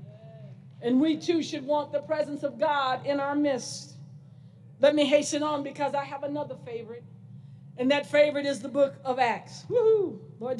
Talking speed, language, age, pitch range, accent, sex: 175 wpm, English, 50-69, 260-315 Hz, American, female